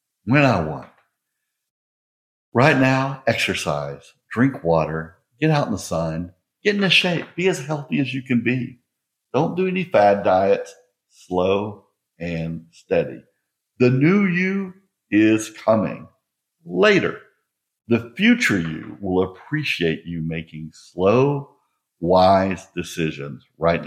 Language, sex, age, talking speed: English, male, 60-79, 125 wpm